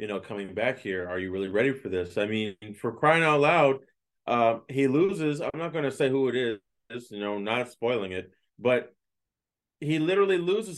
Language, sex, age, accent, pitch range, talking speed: English, male, 20-39, American, 105-155 Hz, 210 wpm